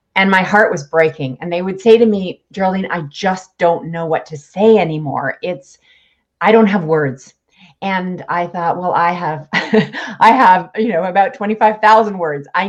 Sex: female